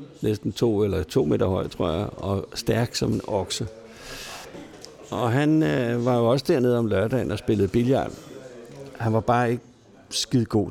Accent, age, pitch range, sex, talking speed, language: native, 60-79, 105-140 Hz, male, 175 wpm, Danish